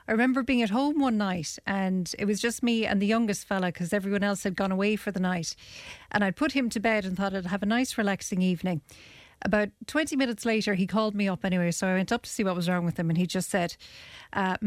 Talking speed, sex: 260 wpm, female